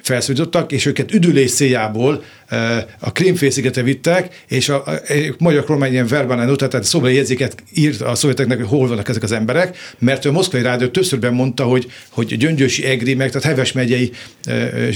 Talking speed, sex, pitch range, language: 170 wpm, male, 125-155 Hz, Hungarian